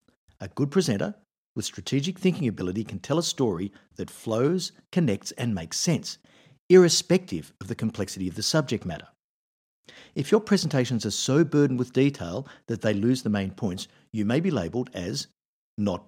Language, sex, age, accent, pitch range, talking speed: English, male, 50-69, Australian, 105-150 Hz, 170 wpm